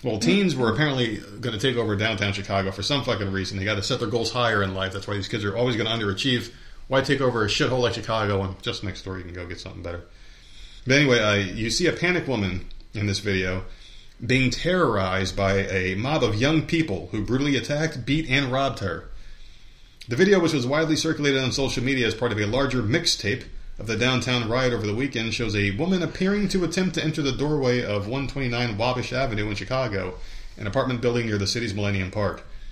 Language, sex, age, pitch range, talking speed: English, male, 30-49, 100-135 Hz, 220 wpm